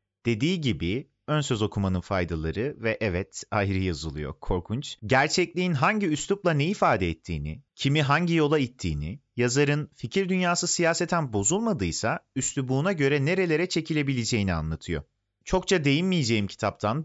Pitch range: 100-165 Hz